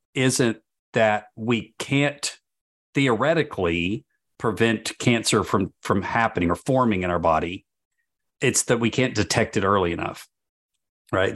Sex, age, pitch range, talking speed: male, 50-69, 100-120 Hz, 125 wpm